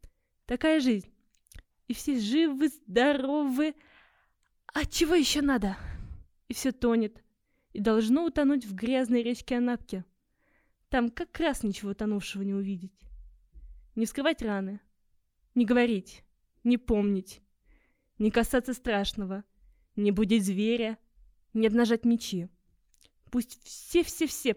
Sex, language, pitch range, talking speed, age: female, Russian, 205-260 Hz, 110 wpm, 20-39